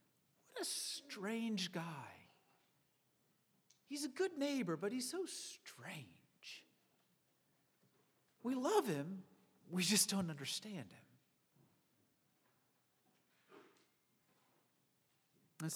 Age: 50-69